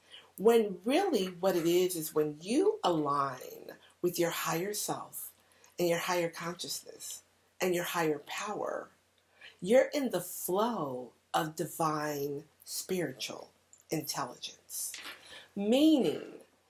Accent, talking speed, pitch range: American, 110 wpm, 160-230 Hz